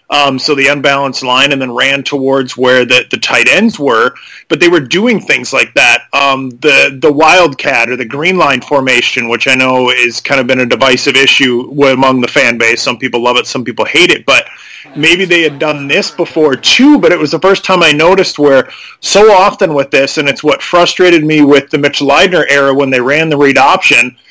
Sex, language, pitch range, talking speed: male, English, 135-170 Hz, 220 wpm